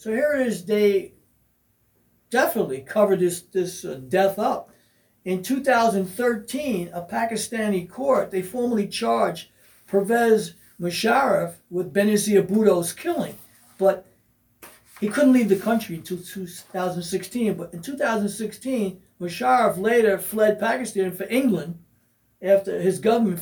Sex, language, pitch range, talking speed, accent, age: male, English, 180-225 Hz, 115 wpm, American, 60-79